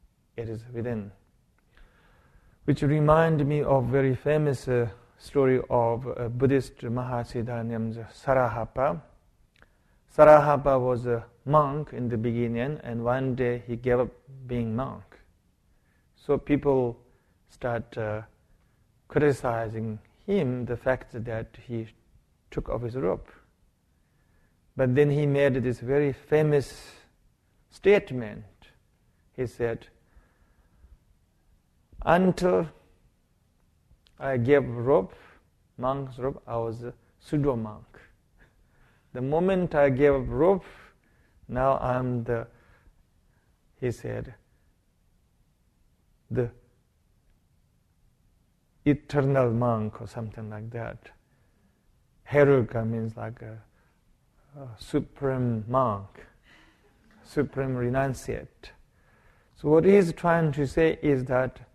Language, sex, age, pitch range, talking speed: English, male, 50-69, 115-140 Hz, 100 wpm